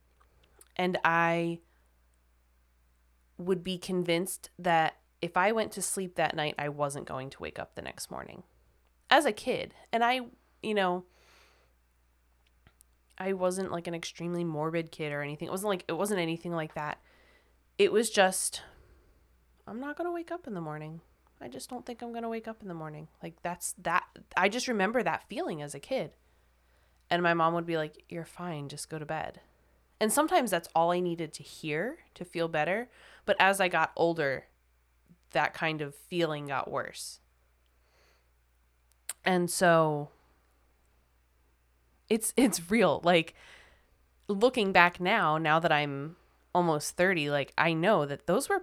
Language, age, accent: English, 20-39, American